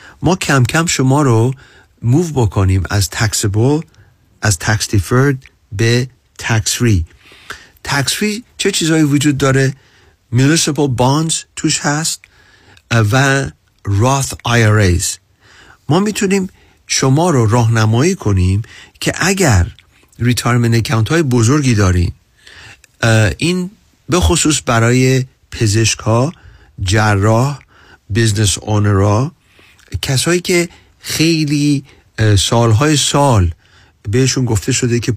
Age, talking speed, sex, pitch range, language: 50-69, 100 wpm, male, 100-140 Hz, Persian